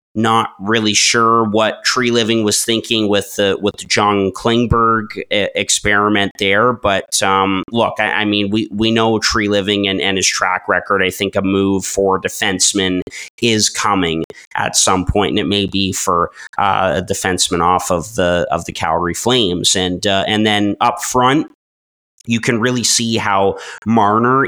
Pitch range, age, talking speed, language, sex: 95-110 Hz, 30-49, 170 wpm, English, male